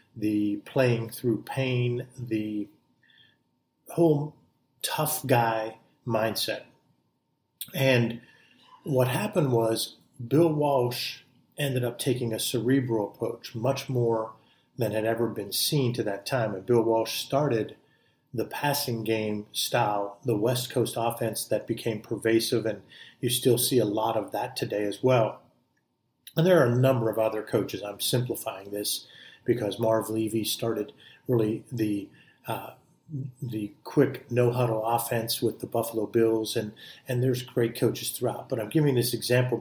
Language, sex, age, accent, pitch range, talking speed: English, male, 50-69, American, 110-130 Hz, 145 wpm